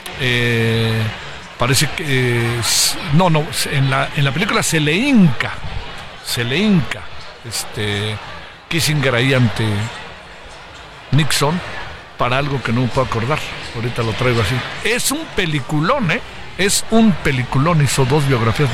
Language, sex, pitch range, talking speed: Spanish, male, 115-150 Hz, 140 wpm